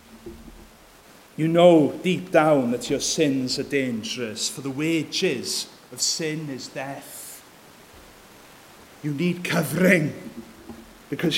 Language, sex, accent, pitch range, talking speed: English, male, British, 135-170 Hz, 105 wpm